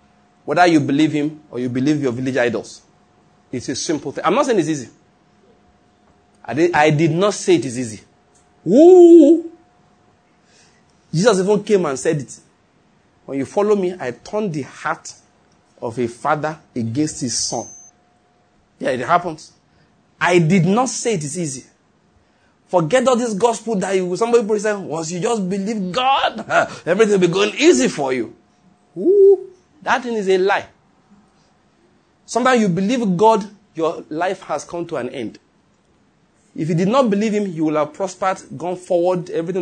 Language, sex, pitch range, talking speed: English, male, 155-205 Hz, 165 wpm